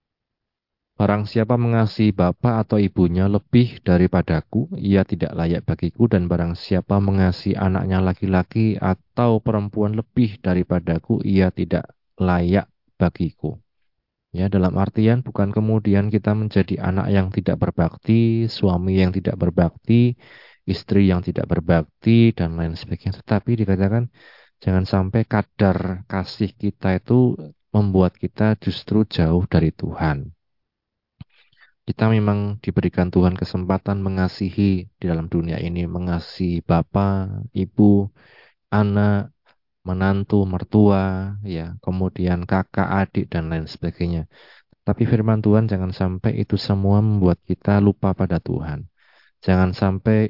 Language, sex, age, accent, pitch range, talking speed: Indonesian, male, 30-49, native, 90-105 Hz, 115 wpm